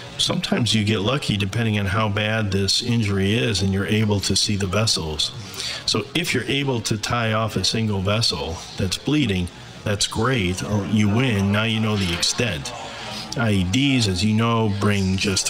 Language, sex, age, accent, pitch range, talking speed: English, male, 40-59, American, 100-120 Hz, 175 wpm